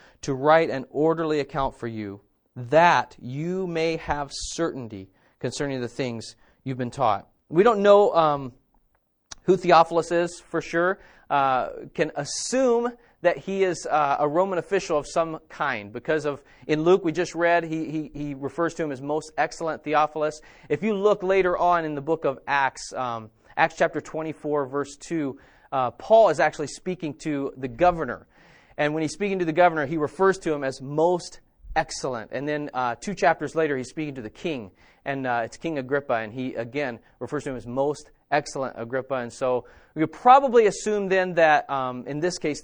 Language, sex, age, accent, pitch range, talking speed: English, male, 30-49, American, 135-170 Hz, 185 wpm